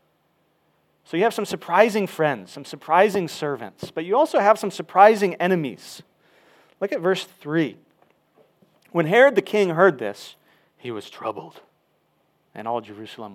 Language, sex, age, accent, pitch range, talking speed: English, male, 30-49, American, 130-180 Hz, 145 wpm